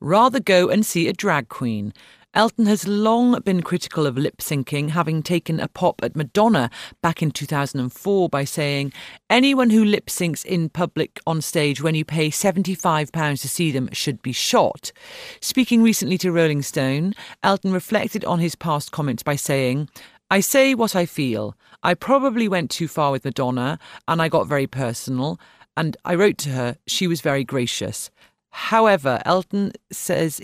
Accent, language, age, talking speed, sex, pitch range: British, English, 40-59, 165 wpm, female, 140-200 Hz